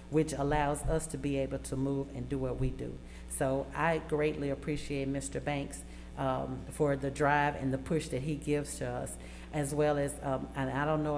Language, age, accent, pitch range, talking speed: English, 40-59, American, 135-160 Hz, 210 wpm